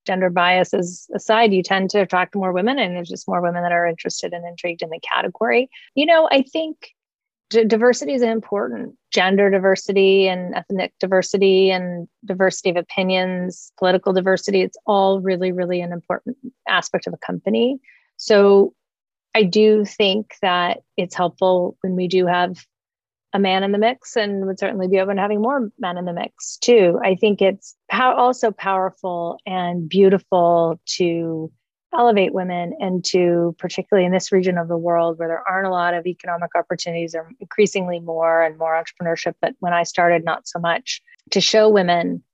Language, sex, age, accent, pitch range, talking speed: English, female, 30-49, American, 175-200 Hz, 175 wpm